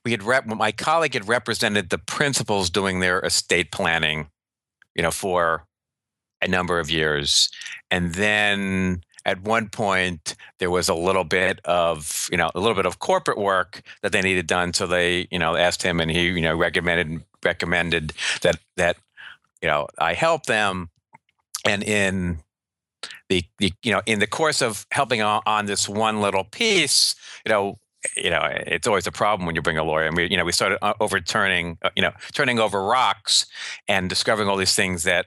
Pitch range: 85-105 Hz